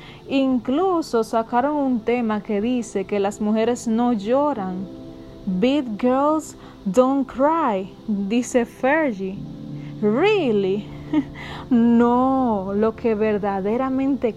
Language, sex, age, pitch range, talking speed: Spanish, female, 20-39, 200-255 Hz, 90 wpm